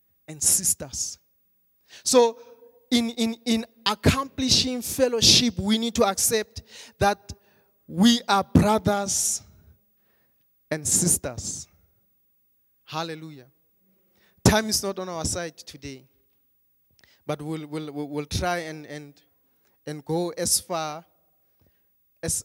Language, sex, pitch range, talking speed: English, male, 160-215 Hz, 105 wpm